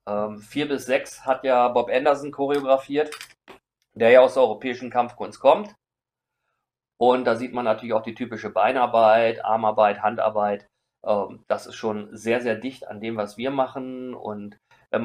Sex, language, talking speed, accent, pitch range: male, German, 165 wpm, German, 110-130 Hz